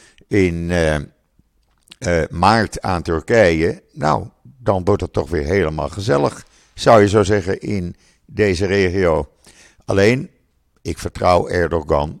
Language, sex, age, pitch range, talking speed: Dutch, male, 50-69, 85-105 Hz, 125 wpm